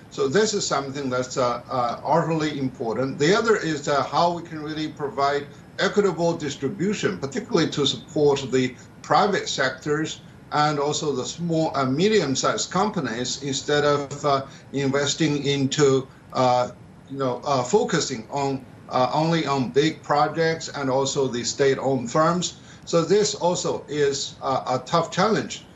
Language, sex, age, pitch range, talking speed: English, male, 50-69, 135-160 Hz, 145 wpm